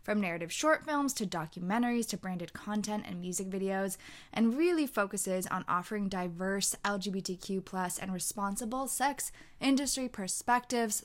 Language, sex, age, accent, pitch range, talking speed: English, female, 20-39, American, 185-230 Hz, 135 wpm